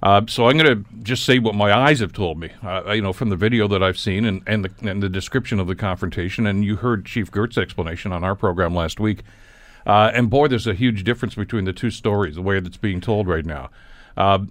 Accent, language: American, English